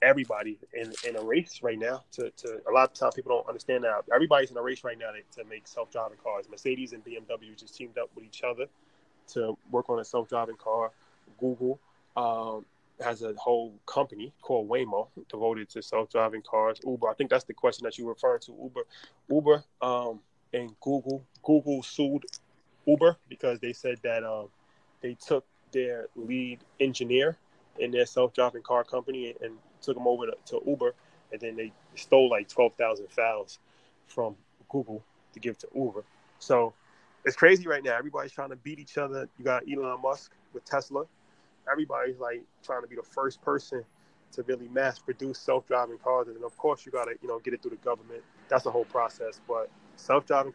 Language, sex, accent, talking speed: English, male, American, 185 wpm